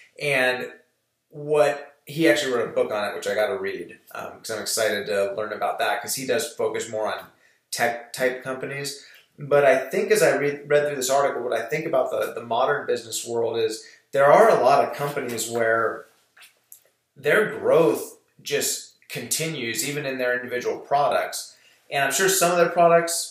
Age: 30-49